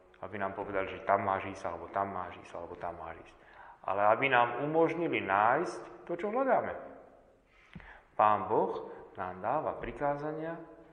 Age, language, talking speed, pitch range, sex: 40-59, Slovak, 155 wpm, 100-150 Hz, male